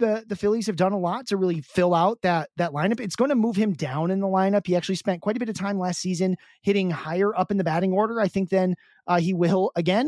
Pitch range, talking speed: 170-205 Hz, 280 wpm